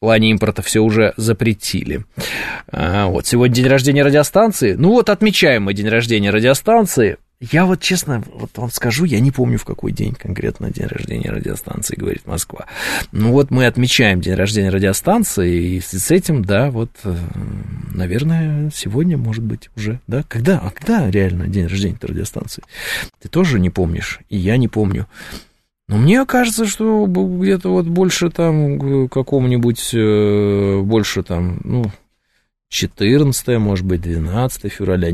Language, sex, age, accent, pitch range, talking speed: Russian, male, 20-39, native, 105-150 Hz, 150 wpm